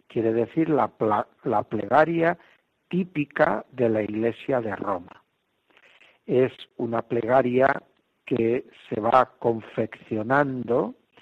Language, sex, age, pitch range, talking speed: Spanish, male, 60-79, 110-140 Hz, 95 wpm